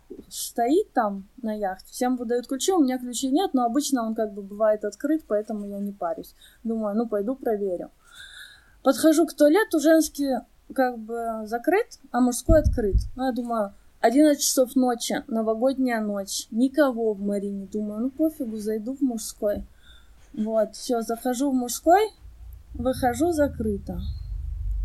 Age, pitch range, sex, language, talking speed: 20-39, 215-290 Hz, female, Russian, 145 wpm